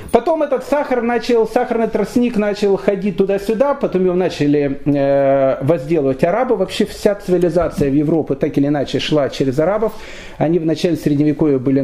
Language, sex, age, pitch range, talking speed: Russian, male, 40-59, 160-220 Hz, 150 wpm